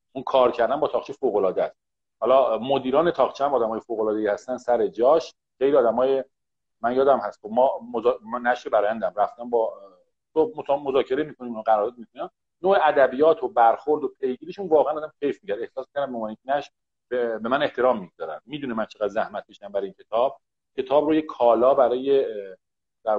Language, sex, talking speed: Persian, male, 175 wpm